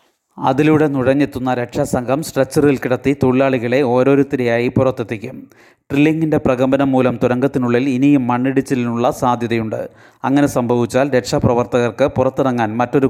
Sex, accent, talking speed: male, native, 90 wpm